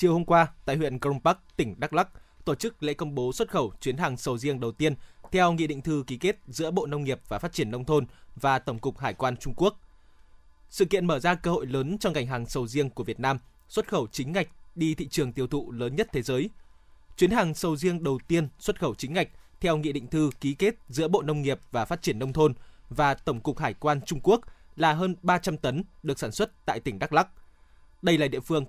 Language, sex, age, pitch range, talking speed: Vietnamese, male, 20-39, 130-170 Hz, 250 wpm